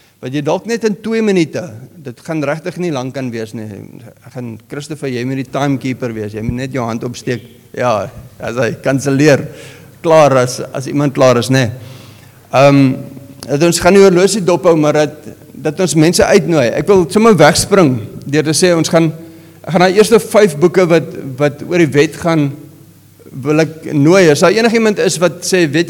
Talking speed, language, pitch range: 190 wpm, English, 130-175 Hz